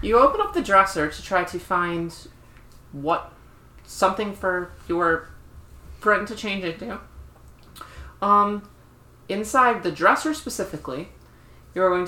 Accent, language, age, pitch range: American, English, 30-49, 160-185 Hz